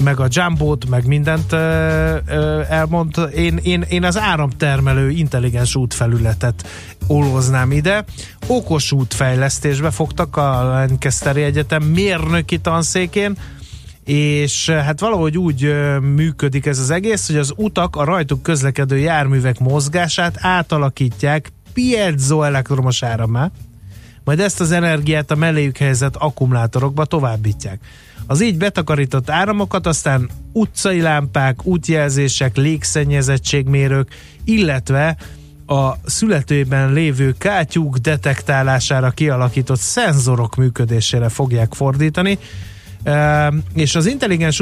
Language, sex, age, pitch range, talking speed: Hungarian, male, 30-49, 130-160 Hz, 105 wpm